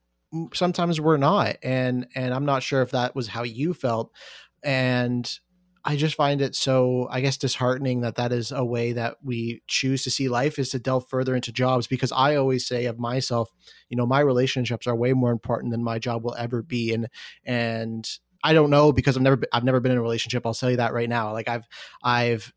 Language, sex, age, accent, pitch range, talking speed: English, male, 30-49, American, 120-135 Hz, 225 wpm